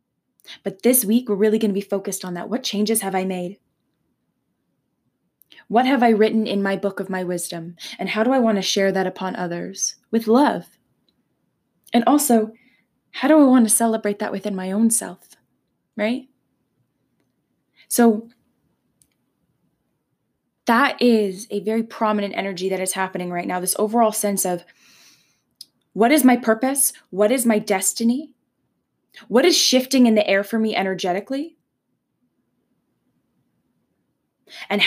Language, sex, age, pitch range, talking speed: English, female, 20-39, 195-235 Hz, 150 wpm